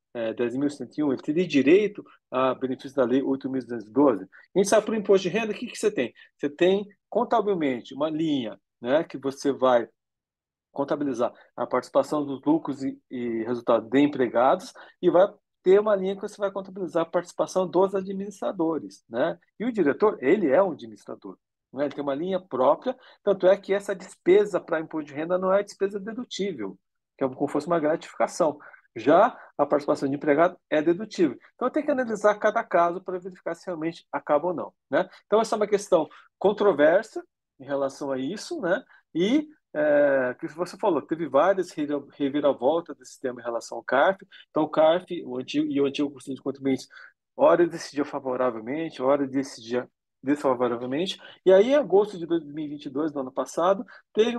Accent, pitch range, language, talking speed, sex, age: Brazilian, 135-205 Hz, Portuguese, 180 wpm, male, 50-69